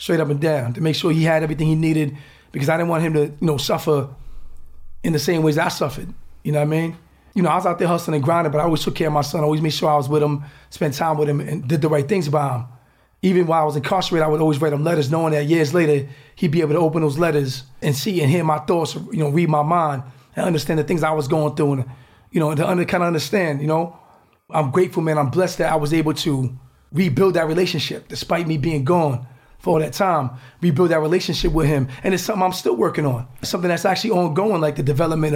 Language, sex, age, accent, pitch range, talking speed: English, male, 30-49, American, 145-170 Hz, 270 wpm